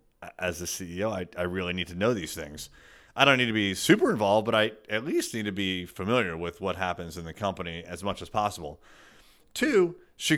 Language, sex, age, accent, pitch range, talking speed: English, male, 30-49, American, 100-140 Hz, 220 wpm